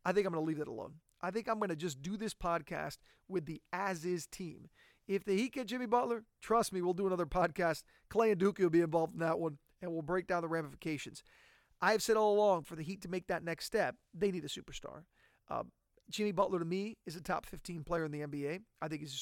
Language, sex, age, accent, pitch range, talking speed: English, male, 40-59, American, 165-195 Hz, 255 wpm